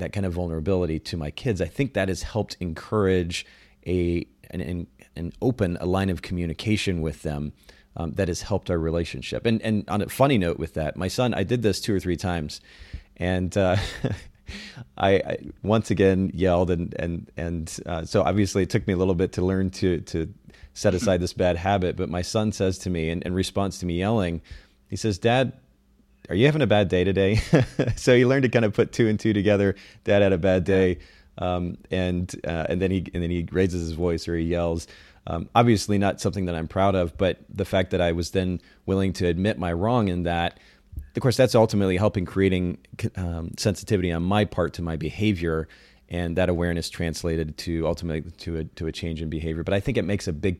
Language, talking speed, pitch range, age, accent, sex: English, 215 wpm, 85-100 Hz, 30-49, American, male